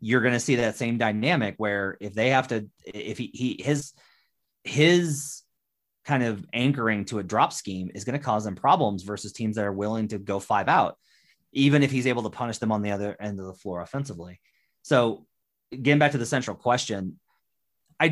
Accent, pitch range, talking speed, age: American, 100-130 Hz, 205 wpm, 30-49